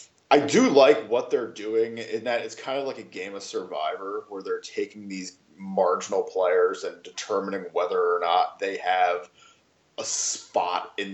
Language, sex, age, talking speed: English, male, 20-39, 170 wpm